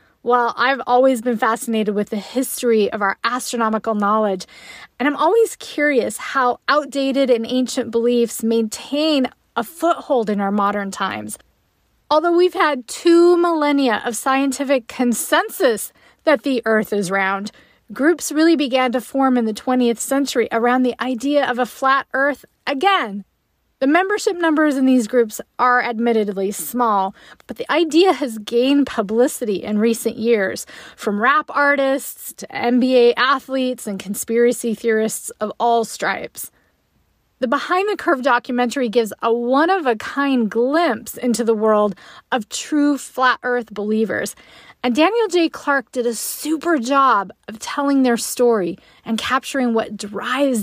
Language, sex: English, female